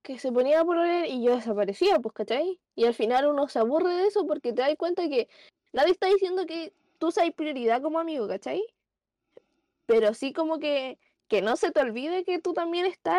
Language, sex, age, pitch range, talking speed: Spanish, female, 10-29, 240-335 Hz, 210 wpm